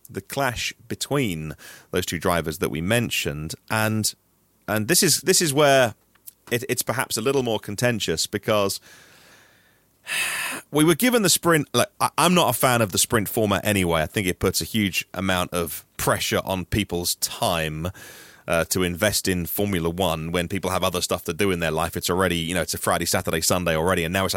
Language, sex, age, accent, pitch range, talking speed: English, male, 30-49, British, 95-130 Hz, 195 wpm